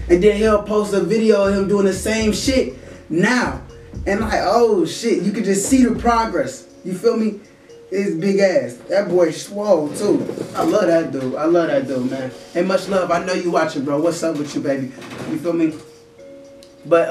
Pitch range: 155-210 Hz